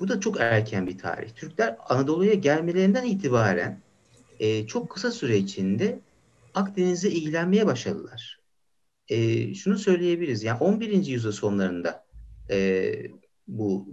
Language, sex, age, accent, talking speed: Turkish, male, 60-79, native, 115 wpm